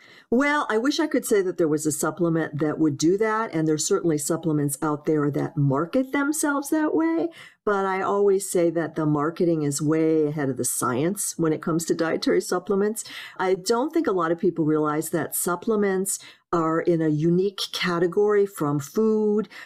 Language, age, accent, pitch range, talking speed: English, 50-69, American, 155-200 Hz, 190 wpm